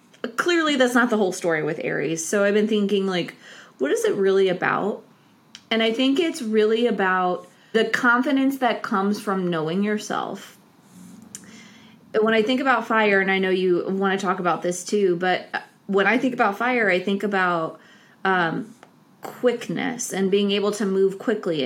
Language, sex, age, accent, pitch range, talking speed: English, female, 20-39, American, 185-225 Hz, 175 wpm